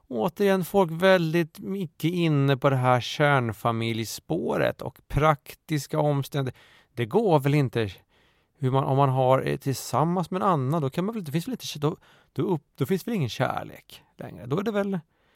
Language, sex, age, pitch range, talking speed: Swedish, male, 30-49, 120-160 Hz, 175 wpm